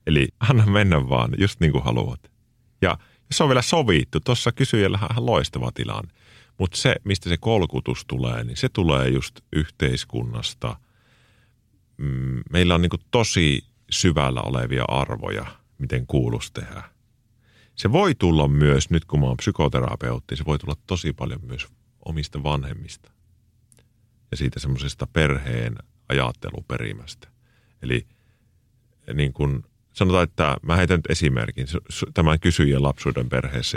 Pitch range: 70-110 Hz